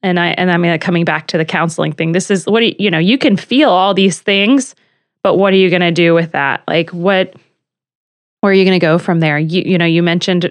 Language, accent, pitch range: English, American, 165-195 Hz